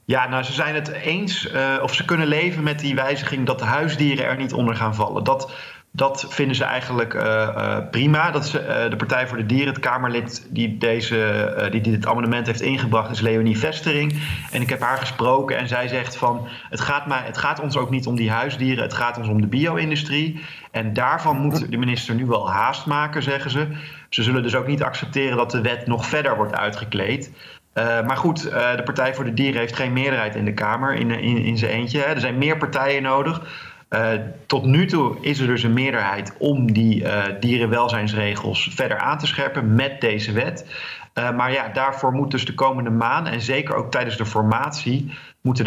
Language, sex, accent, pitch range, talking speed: Dutch, male, Dutch, 115-145 Hz, 215 wpm